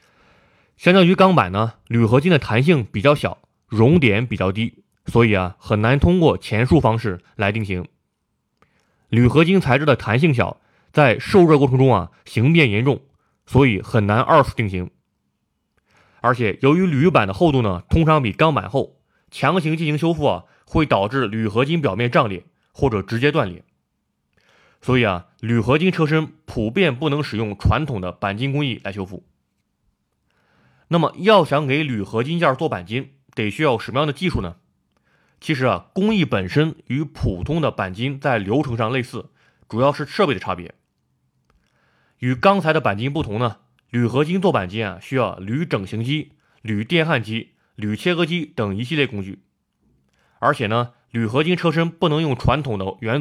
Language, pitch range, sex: Chinese, 105-155 Hz, male